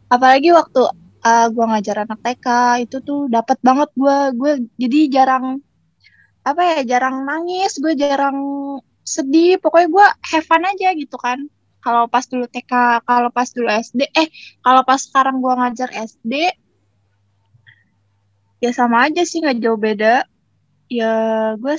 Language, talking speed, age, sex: Indonesian, 145 wpm, 20-39, female